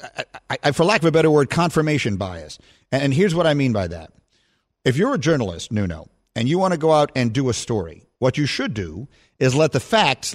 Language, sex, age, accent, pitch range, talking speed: English, male, 50-69, American, 120-180 Hz, 230 wpm